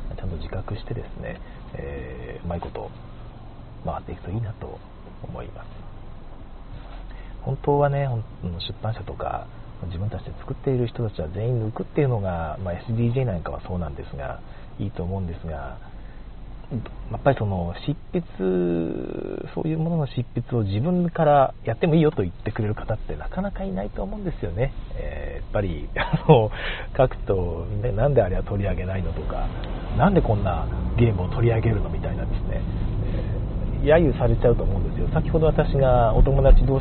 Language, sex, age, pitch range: Japanese, male, 40-59, 95-135 Hz